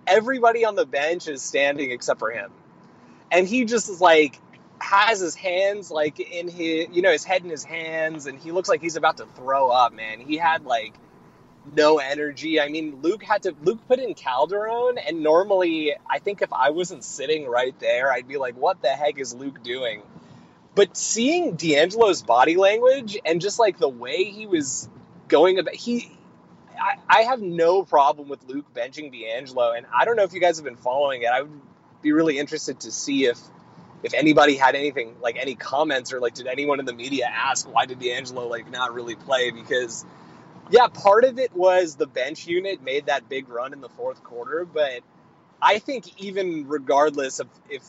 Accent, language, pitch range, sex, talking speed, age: American, English, 145-230 Hz, male, 195 wpm, 20-39